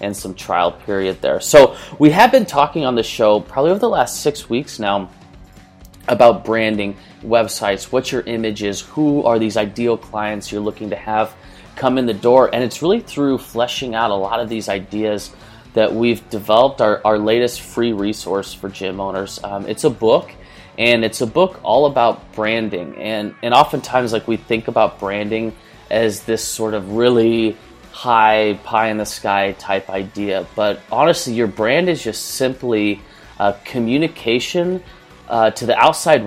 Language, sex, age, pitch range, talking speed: English, male, 20-39, 105-135 Hz, 175 wpm